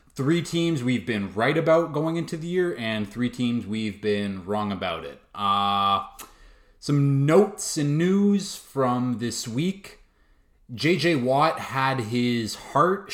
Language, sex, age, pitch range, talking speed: English, male, 20-39, 95-140 Hz, 140 wpm